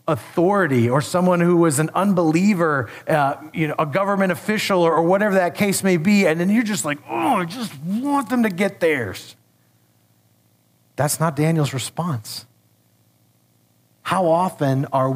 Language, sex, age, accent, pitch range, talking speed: English, male, 40-59, American, 125-195 Hz, 155 wpm